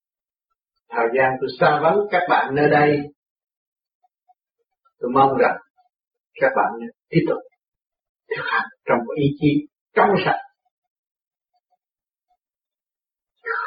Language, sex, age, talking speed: Vietnamese, male, 60-79, 100 wpm